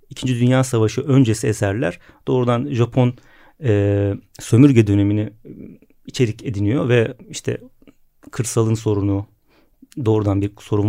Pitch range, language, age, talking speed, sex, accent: 105-140 Hz, Turkish, 40-59, 105 wpm, male, native